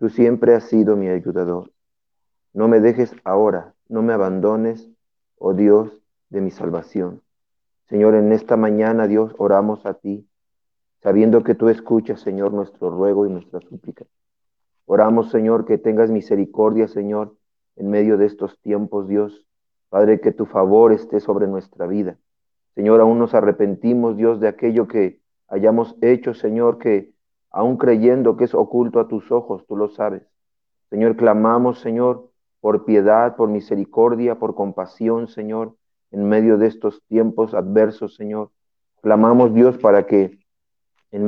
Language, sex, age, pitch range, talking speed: Spanish, male, 40-59, 105-115 Hz, 145 wpm